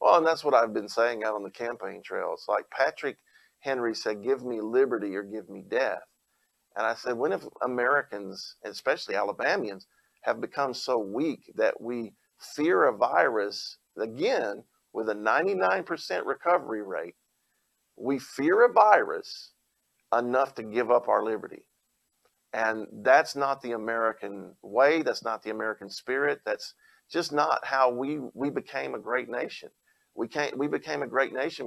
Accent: American